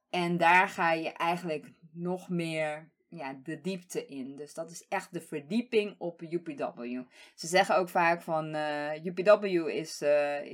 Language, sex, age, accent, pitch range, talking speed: English, female, 20-39, Dutch, 170-225 Hz, 155 wpm